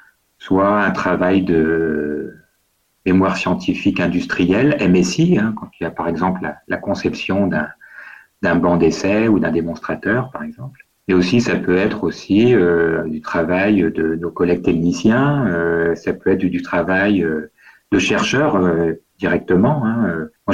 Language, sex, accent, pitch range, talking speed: French, male, French, 85-110 Hz, 155 wpm